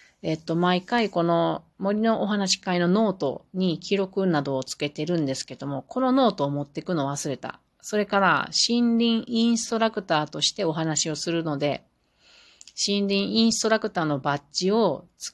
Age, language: 40-59, Japanese